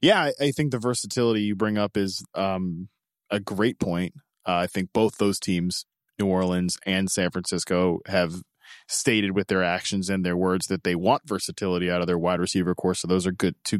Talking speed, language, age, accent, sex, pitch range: 210 wpm, English, 20-39, American, male, 95-115 Hz